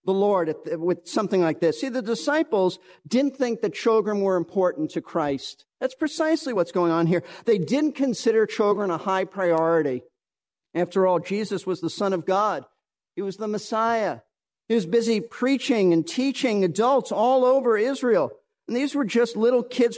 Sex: male